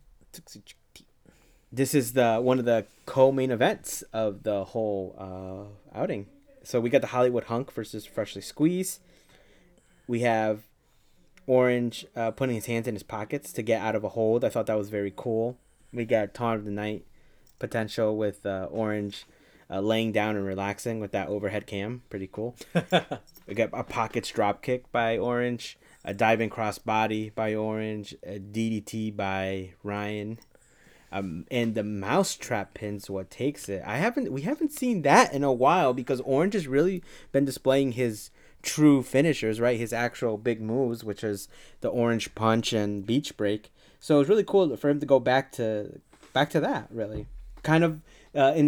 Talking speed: 175 wpm